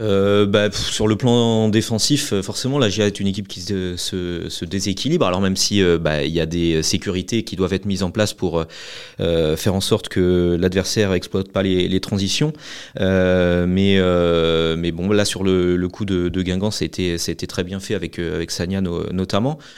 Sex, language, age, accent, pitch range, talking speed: male, French, 30-49, French, 95-115 Hz, 205 wpm